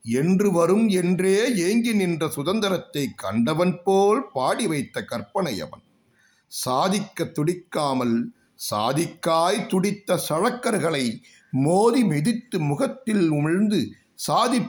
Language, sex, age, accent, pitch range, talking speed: Tamil, male, 50-69, native, 150-205 Hz, 85 wpm